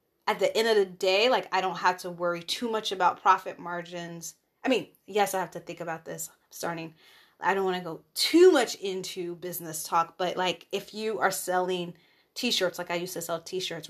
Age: 20-39